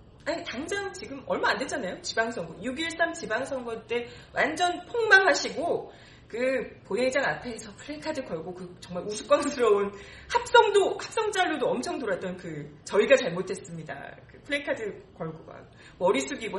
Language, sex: Korean, female